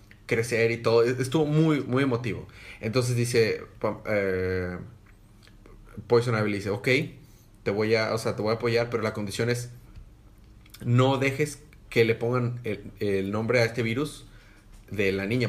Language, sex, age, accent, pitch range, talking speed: Spanish, male, 30-49, Mexican, 100-120 Hz, 160 wpm